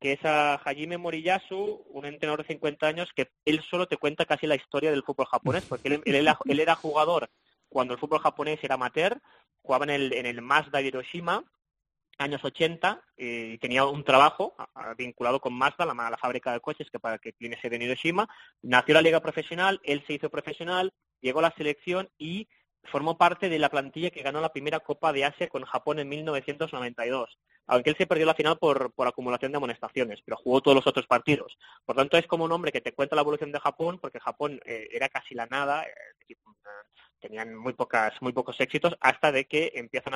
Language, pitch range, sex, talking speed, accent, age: Spanish, 130-155 Hz, male, 210 wpm, Spanish, 20-39